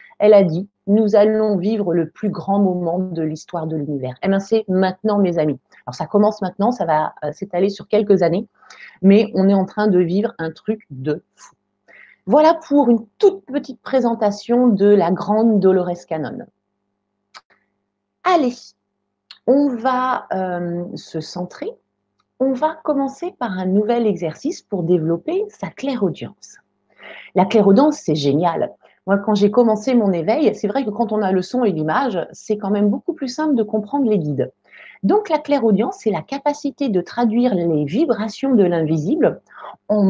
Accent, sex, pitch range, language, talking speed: French, female, 185-250 Hz, French, 170 wpm